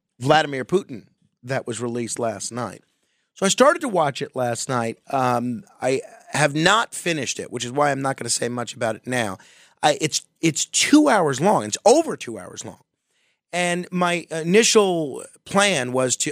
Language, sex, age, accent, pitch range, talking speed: English, male, 30-49, American, 120-155 Hz, 185 wpm